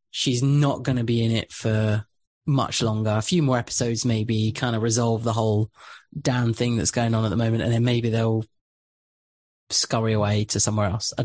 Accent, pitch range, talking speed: British, 115-125 Hz, 205 wpm